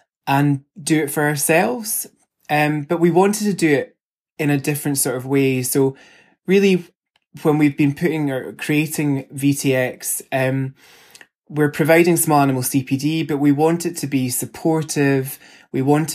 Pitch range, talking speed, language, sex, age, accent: 135-165 Hz, 155 wpm, English, male, 20-39, British